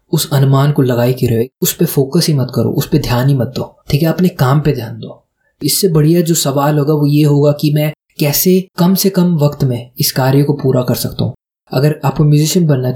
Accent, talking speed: native, 220 wpm